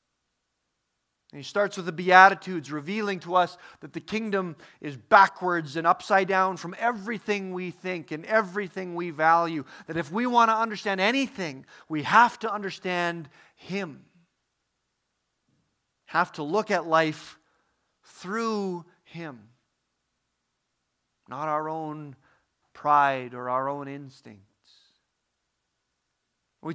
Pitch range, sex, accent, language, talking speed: 170-215 Hz, male, American, English, 115 wpm